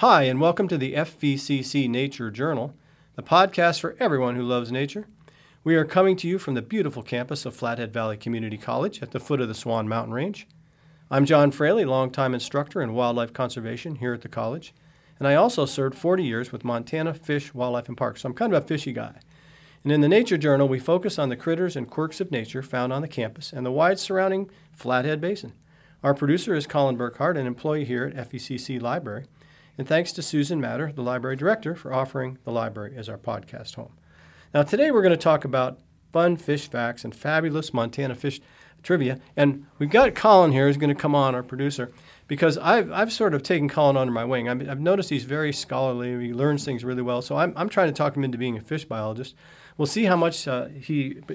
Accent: American